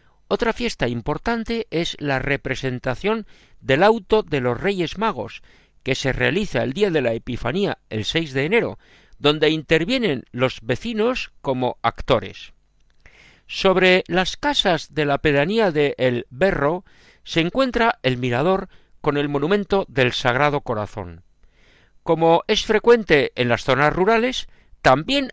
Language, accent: Spanish, Spanish